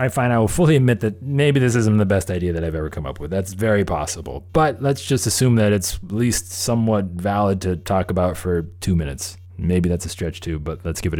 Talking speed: 250 wpm